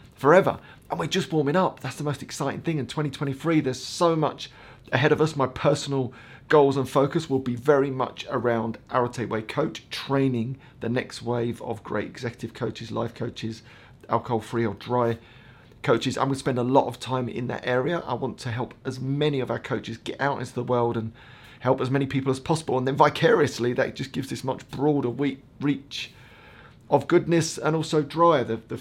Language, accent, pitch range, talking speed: English, British, 115-140 Hz, 200 wpm